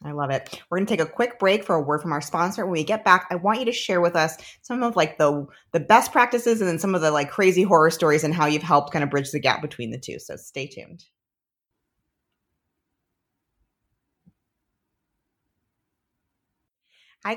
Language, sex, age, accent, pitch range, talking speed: English, female, 30-49, American, 150-190 Hz, 205 wpm